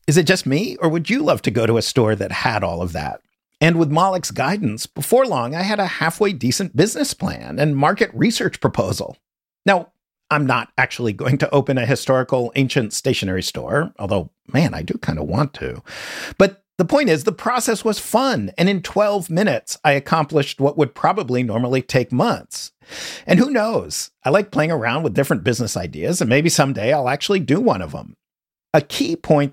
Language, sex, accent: English, male, American